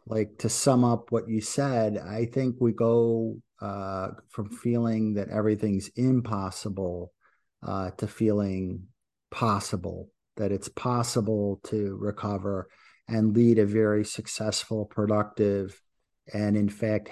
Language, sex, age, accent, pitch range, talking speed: English, male, 50-69, American, 100-115 Hz, 125 wpm